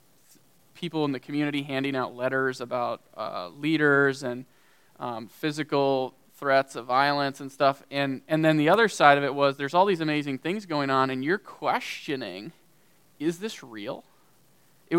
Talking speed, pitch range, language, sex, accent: 165 wpm, 135-170 Hz, English, male, American